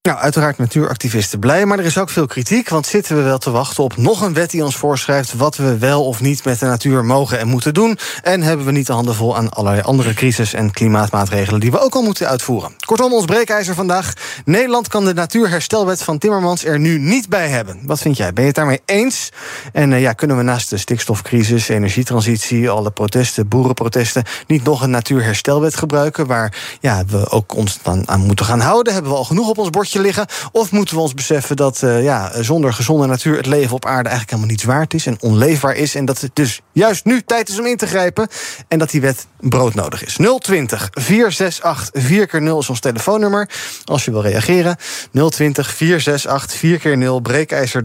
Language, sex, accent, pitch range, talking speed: Dutch, male, Dutch, 125-170 Hz, 200 wpm